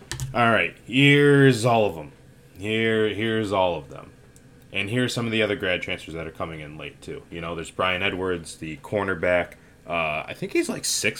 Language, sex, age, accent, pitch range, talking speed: English, male, 20-39, American, 85-95 Hz, 205 wpm